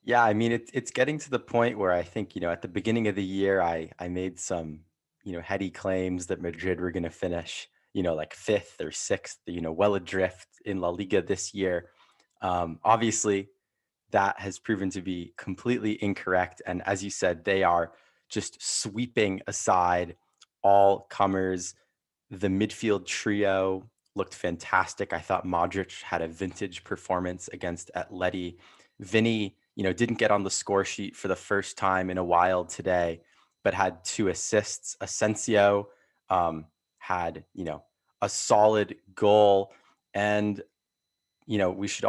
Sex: male